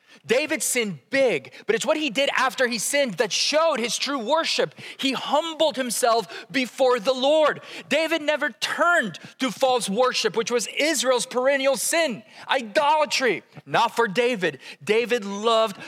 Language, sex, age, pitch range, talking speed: English, male, 30-49, 200-260 Hz, 145 wpm